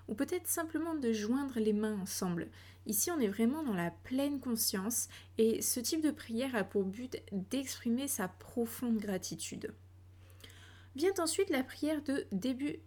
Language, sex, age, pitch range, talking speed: French, female, 20-39, 195-265 Hz, 160 wpm